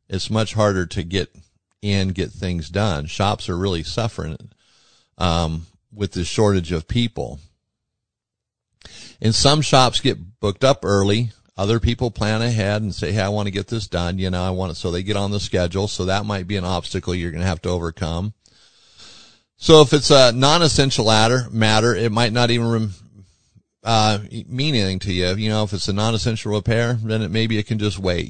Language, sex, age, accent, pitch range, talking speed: English, male, 40-59, American, 95-115 Hz, 190 wpm